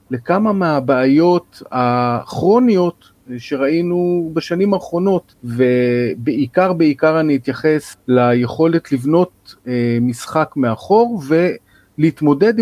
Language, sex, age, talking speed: Hebrew, male, 40-59, 70 wpm